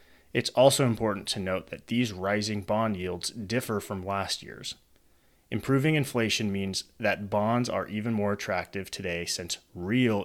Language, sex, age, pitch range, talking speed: English, male, 30-49, 90-115 Hz, 150 wpm